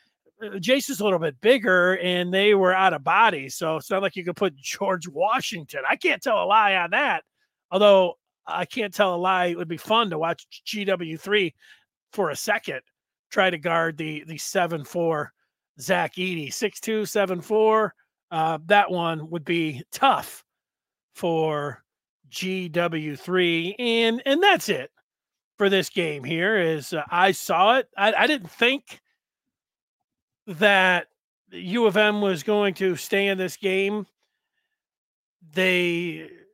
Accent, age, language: American, 40-59, English